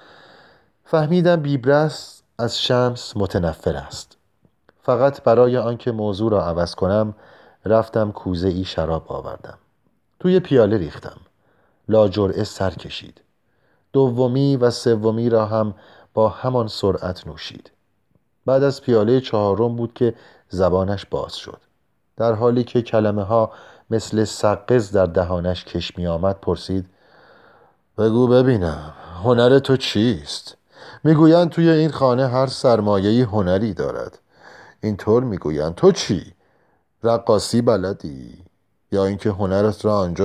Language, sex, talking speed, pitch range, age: Persian, male, 120 wpm, 95-130 Hz, 40-59